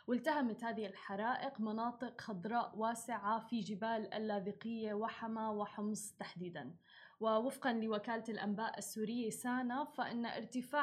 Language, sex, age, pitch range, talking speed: Arabic, female, 10-29, 210-250 Hz, 105 wpm